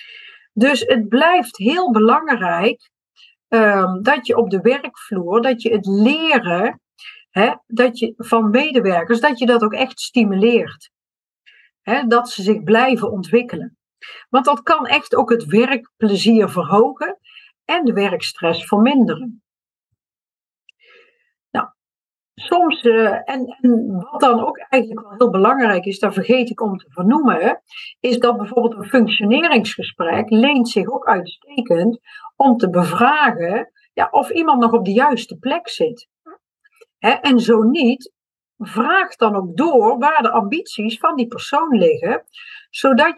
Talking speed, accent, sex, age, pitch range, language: 125 wpm, Dutch, female, 50-69, 215-275 Hz, Dutch